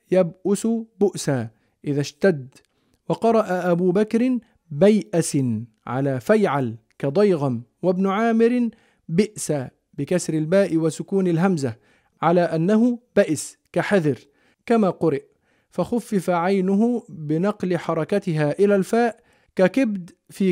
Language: Arabic